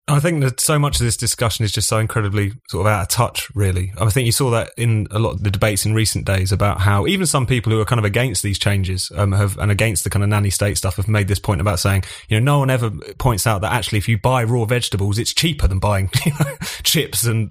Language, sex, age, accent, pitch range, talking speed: English, male, 30-49, British, 105-130 Hz, 270 wpm